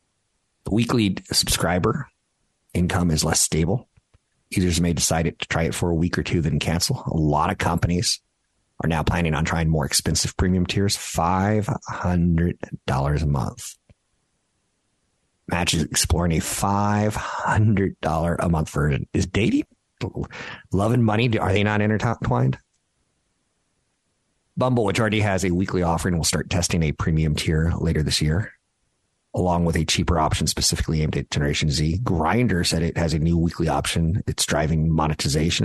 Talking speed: 160 wpm